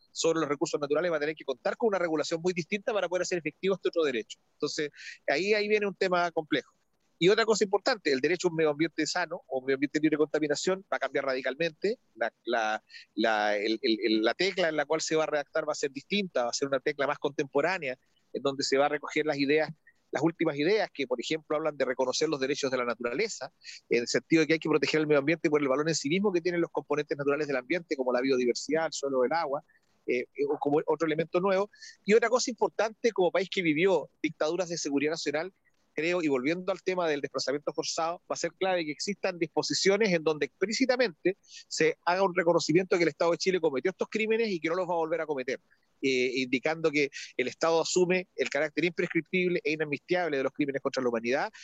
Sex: male